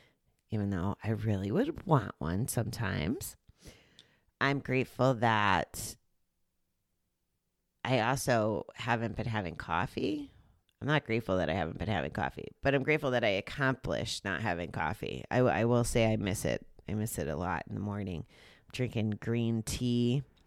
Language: English